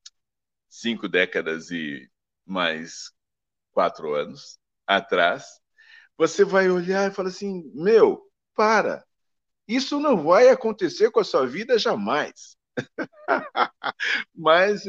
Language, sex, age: Portuguese, male, 50-69